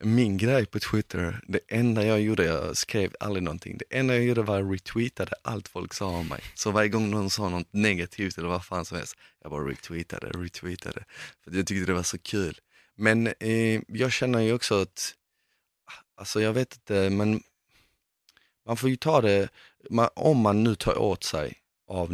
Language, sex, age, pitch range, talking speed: Swedish, male, 30-49, 90-110 Hz, 190 wpm